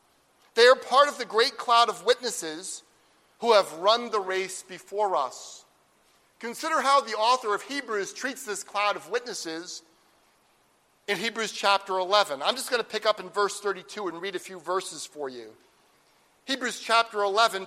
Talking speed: 170 wpm